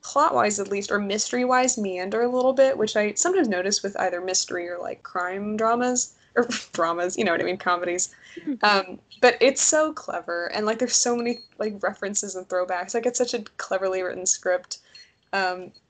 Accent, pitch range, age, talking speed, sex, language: American, 185-245 Hz, 20-39, 190 wpm, female, English